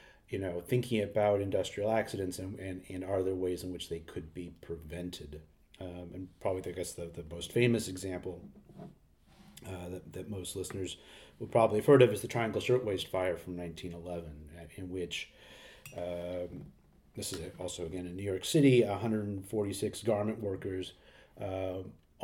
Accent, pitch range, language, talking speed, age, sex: American, 90-105 Hz, English, 160 wpm, 40-59, male